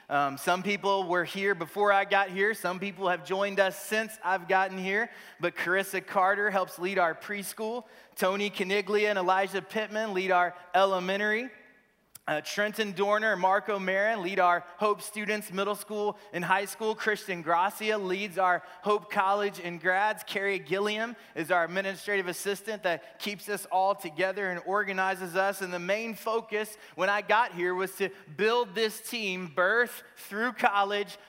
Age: 30-49